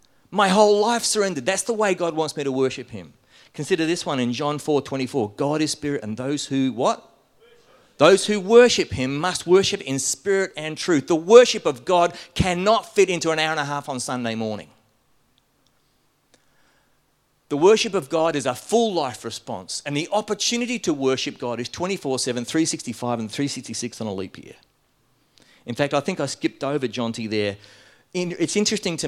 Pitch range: 125-170 Hz